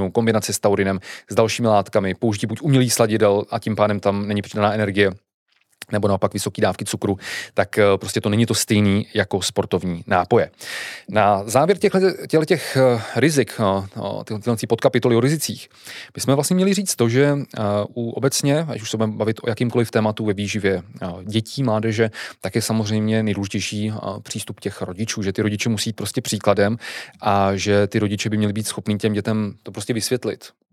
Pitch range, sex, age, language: 105-120 Hz, male, 30-49, Czech